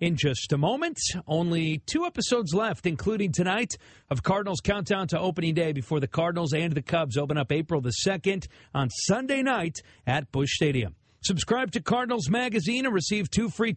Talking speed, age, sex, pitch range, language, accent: 180 wpm, 40-59, male, 150-200 Hz, English, American